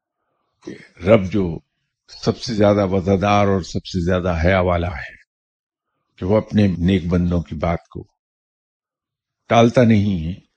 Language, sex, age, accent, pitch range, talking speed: English, male, 50-69, Indian, 85-100 Hz, 135 wpm